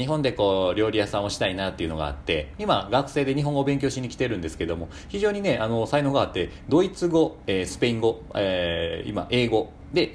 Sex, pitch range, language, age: male, 95-140 Hz, Japanese, 40-59